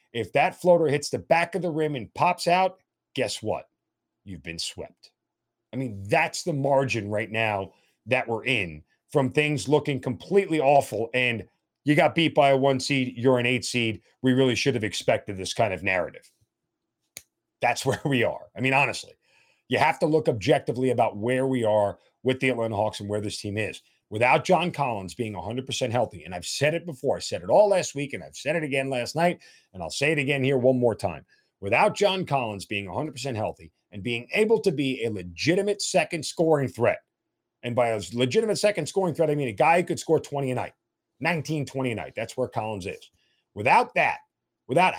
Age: 40-59